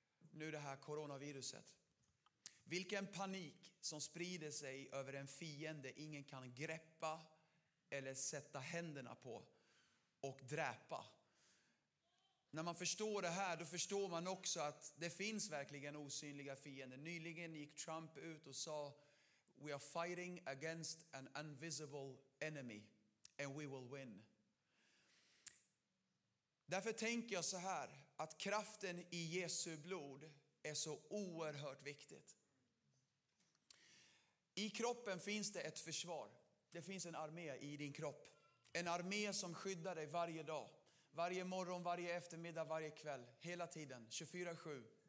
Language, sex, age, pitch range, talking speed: Swedish, male, 30-49, 145-175 Hz, 130 wpm